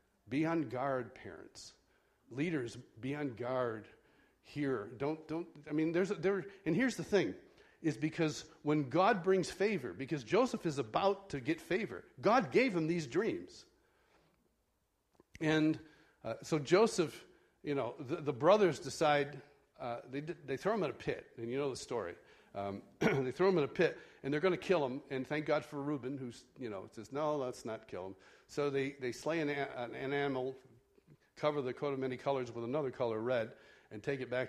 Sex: male